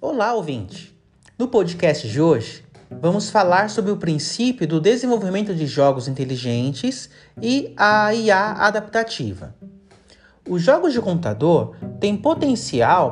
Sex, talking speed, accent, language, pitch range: male, 120 wpm, Brazilian, Portuguese, 145-225 Hz